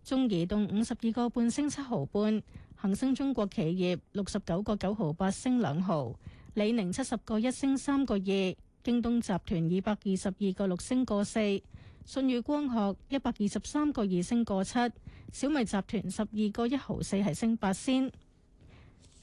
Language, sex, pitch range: Chinese, female, 195-245 Hz